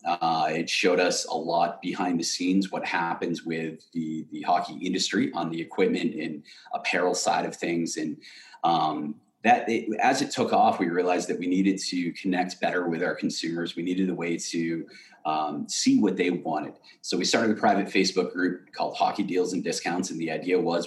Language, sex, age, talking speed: English, male, 30-49, 200 wpm